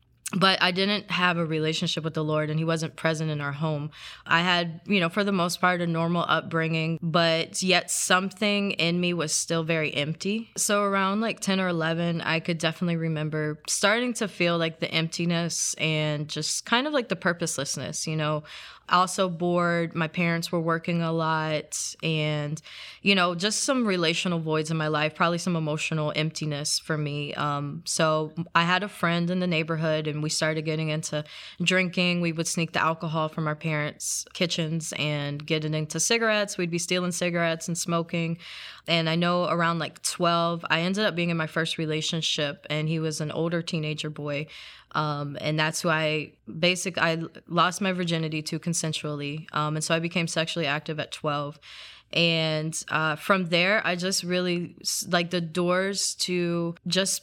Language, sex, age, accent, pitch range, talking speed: English, female, 20-39, American, 155-175 Hz, 180 wpm